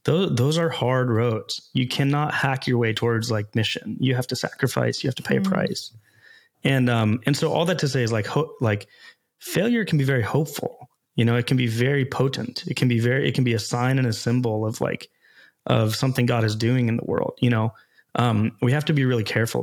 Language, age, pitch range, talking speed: English, 20-39, 115-140 Hz, 235 wpm